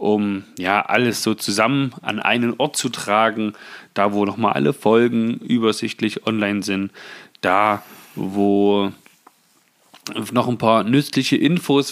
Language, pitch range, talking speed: German, 105-130 Hz, 125 wpm